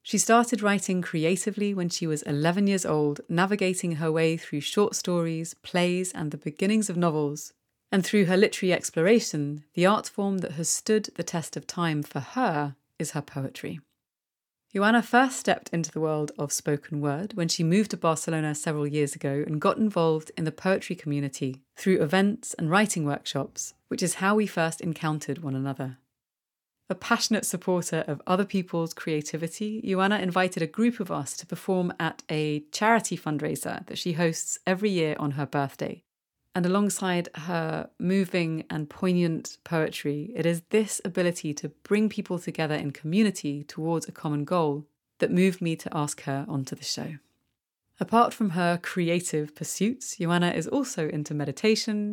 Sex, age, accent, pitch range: female, 30-49, British, 150-195 Hz